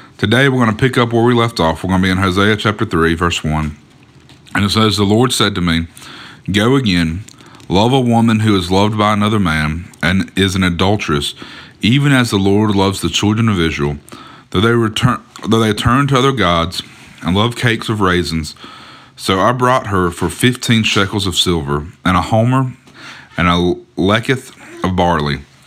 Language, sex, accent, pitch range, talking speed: English, male, American, 85-110 Hz, 195 wpm